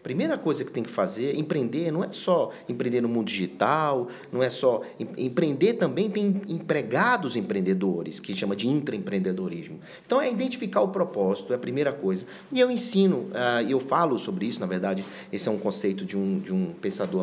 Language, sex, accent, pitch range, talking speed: Portuguese, male, Brazilian, 110-180 Hz, 190 wpm